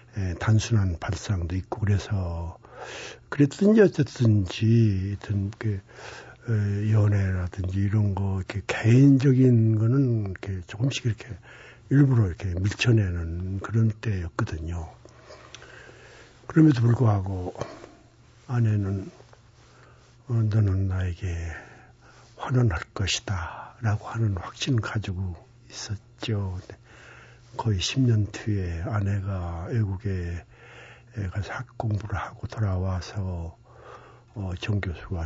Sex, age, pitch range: male, 60-79, 95-120 Hz